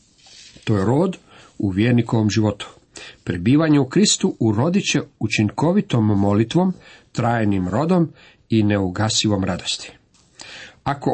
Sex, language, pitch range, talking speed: male, Croatian, 105-155 Hz, 100 wpm